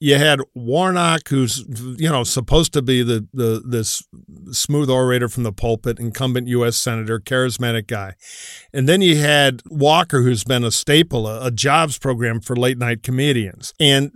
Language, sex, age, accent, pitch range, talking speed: English, male, 50-69, American, 120-155 Hz, 170 wpm